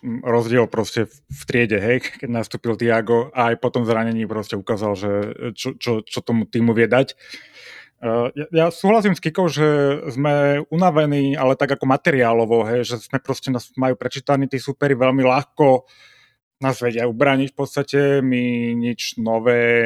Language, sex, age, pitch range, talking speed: Slovak, male, 30-49, 120-150 Hz, 160 wpm